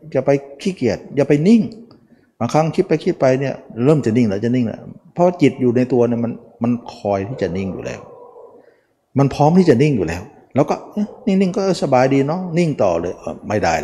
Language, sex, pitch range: Thai, male, 115-170 Hz